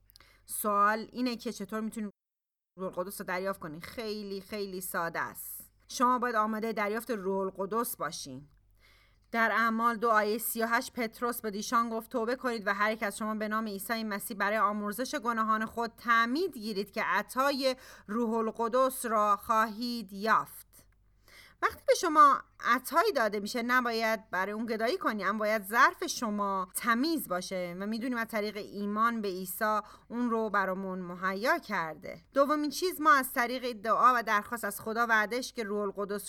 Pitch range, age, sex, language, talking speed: 200-245 Hz, 30-49, female, Persian, 155 wpm